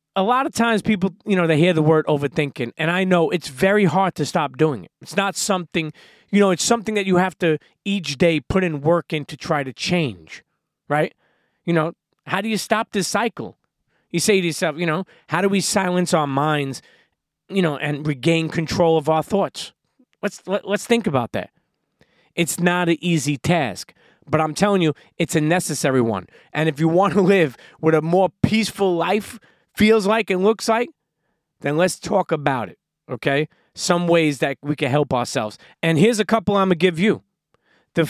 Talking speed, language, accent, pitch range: 205 wpm, English, American, 155-200 Hz